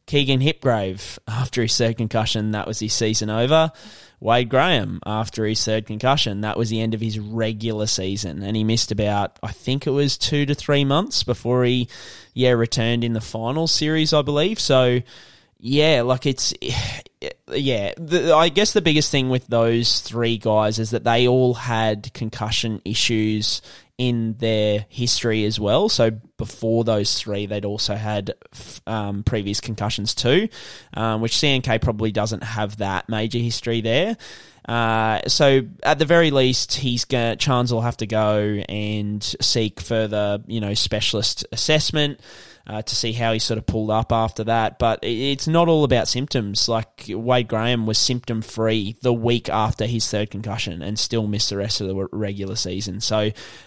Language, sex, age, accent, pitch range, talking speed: English, male, 20-39, Australian, 105-125 Hz, 170 wpm